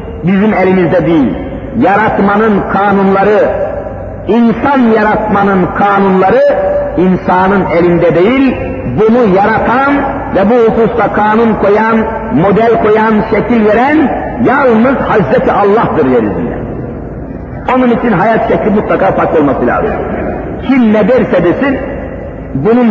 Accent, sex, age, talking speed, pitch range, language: native, male, 50-69, 105 wpm, 180-245 Hz, Turkish